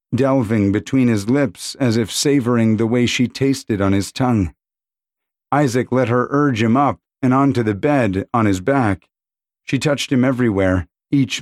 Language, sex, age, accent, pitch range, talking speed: English, male, 40-59, American, 110-140 Hz, 170 wpm